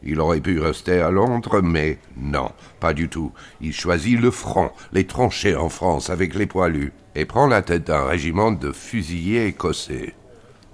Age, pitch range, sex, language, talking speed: 60-79, 80-105 Hz, male, French, 175 wpm